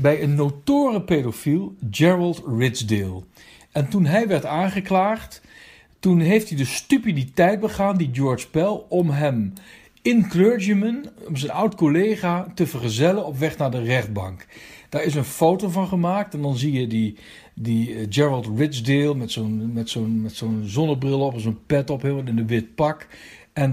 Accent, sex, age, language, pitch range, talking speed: Dutch, male, 50-69, Dutch, 115-175 Hz, 165 wpm